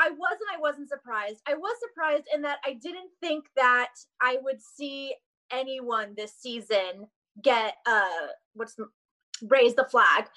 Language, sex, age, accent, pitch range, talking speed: English, female, 20-39, American, 225-305 Hz, 155 wpm